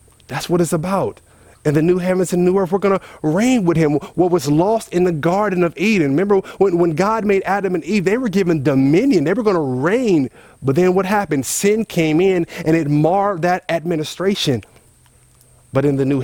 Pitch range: 130-190 Hz